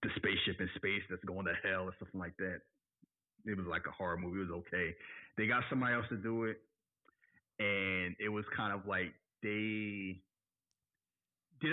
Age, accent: 30-49, American